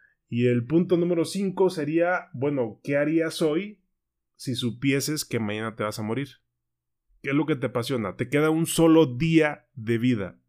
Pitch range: 115-155 Hz